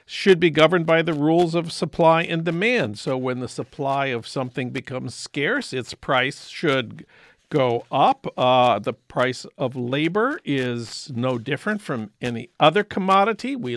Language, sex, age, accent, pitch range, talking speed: English, male, 50-69, American, 145-195 Hz, 155 wpm